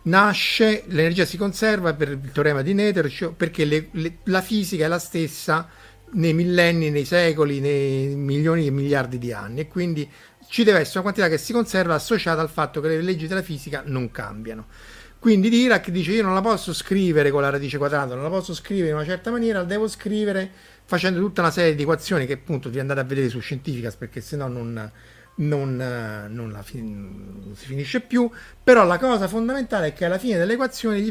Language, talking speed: Italian, 200 wpm